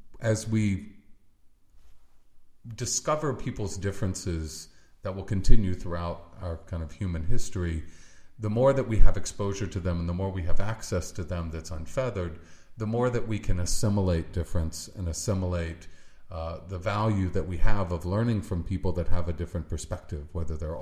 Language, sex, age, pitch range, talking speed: English, male, 50-69, 85-105 Hz, 165 wpm